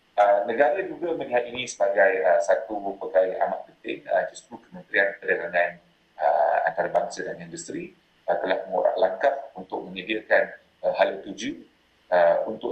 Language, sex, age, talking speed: Malay, male, 30-49, 140 wpm